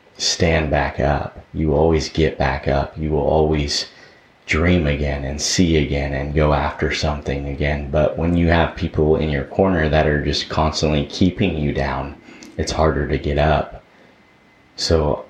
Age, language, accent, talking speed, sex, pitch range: 30-49, English, American, 165 wpm, male, 75-85 Hz